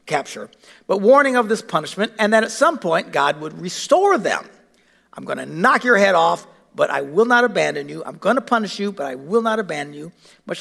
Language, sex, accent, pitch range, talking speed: English, male, American, 180-240 Hz, 225 wpm